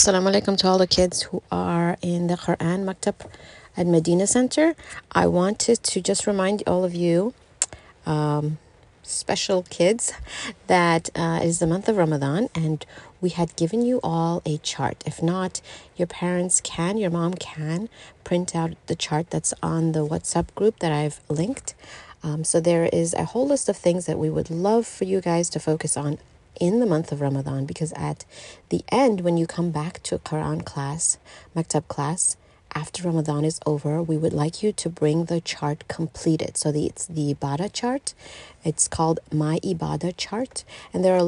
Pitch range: 155-185 Hz